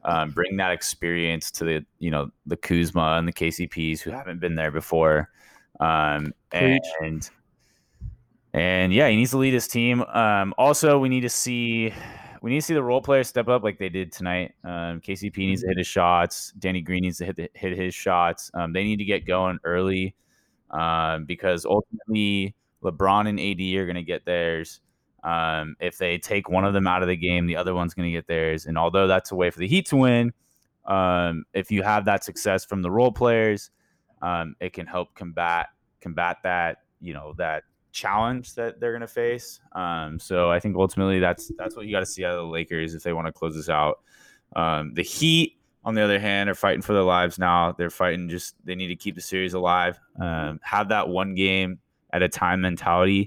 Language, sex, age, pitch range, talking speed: English, male, 20-39, 85-100 Hz, 220 wpm